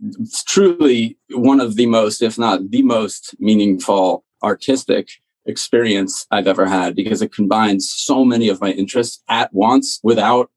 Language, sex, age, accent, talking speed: English, male, 30-49, American, 155 wpm